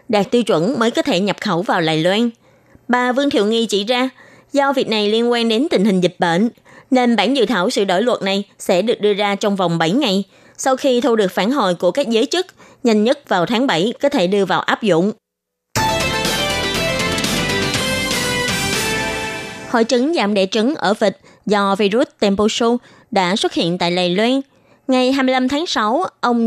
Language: Vietnamese